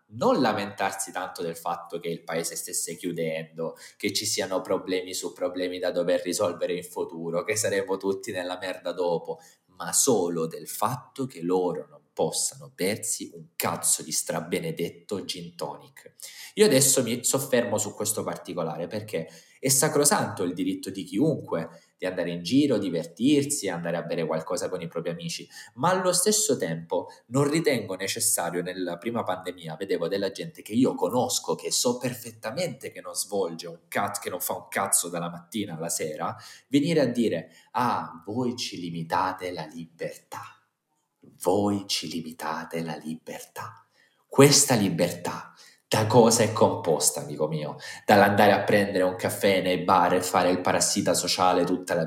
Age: 20-39